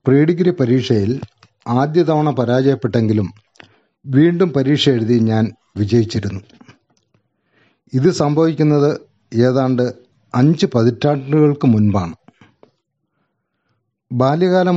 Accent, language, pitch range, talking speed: native, Malayalam, 120-150 Hz, 75 wpm